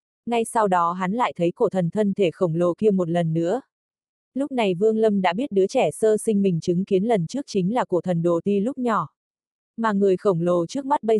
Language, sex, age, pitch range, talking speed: Vietnamese, female, 20-39, 180-220 Hz, 245 wpm